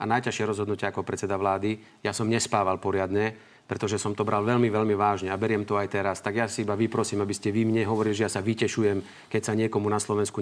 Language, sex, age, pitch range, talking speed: Slovak, male, 40-59, 105-130 Hz, 235 wpm